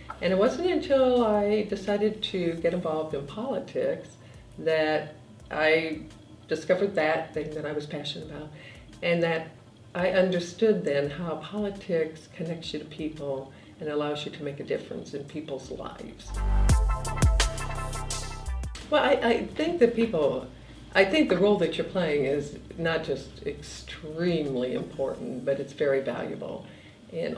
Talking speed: 140 wpm